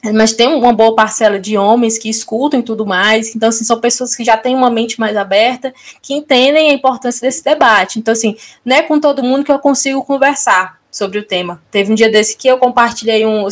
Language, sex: Portuguese, female